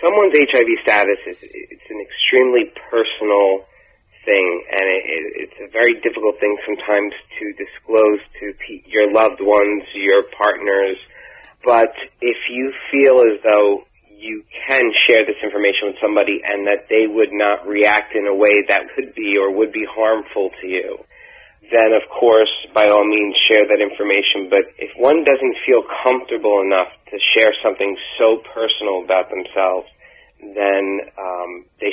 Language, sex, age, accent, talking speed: English, male, 30-49, American, 155 wpm